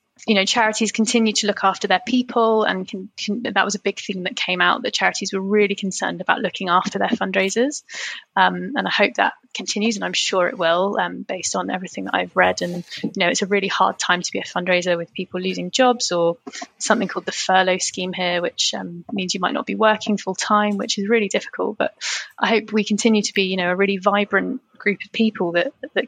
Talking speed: 230 wpm